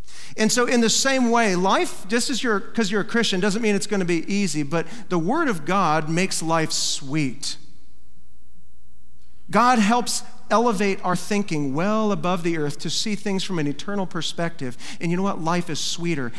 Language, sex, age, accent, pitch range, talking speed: English, male, 40-59, American, 145-190 Hz, 185 wpm